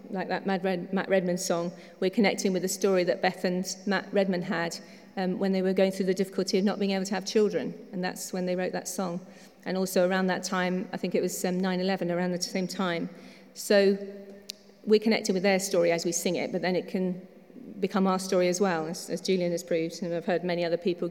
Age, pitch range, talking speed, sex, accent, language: 40-59, 175-200 Hz, 235 wpm, female, British, English